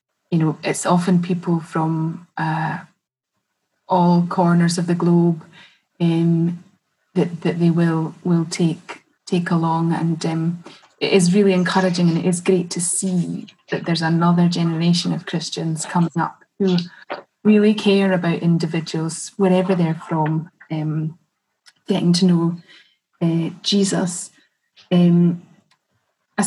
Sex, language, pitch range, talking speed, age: female, English, 165-190 Hz, 130 wpm, 20-39